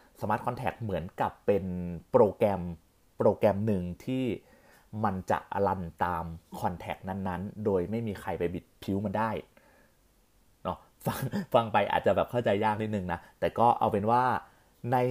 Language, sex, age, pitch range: Thai, male, 30-49, 90-115 Hz